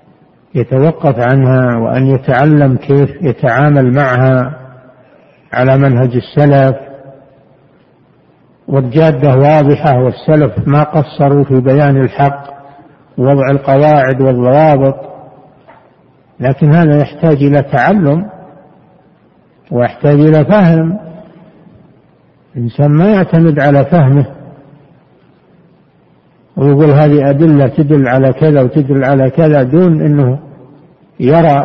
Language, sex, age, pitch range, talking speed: Arabic, male, 60-79, 135-155 Hz, 85 wpm